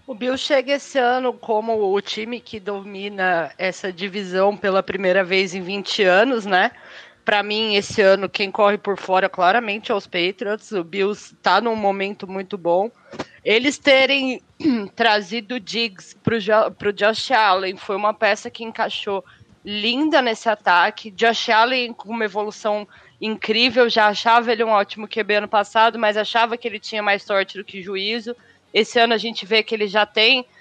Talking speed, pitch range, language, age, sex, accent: 170 wpm, 205-235 Hz, English, 20-39, female, Brazilian